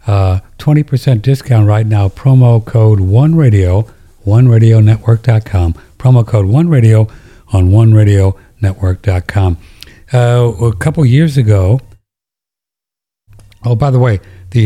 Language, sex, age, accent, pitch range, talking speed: English, male, 60-79, American, 95-125 Hz, 125 wpm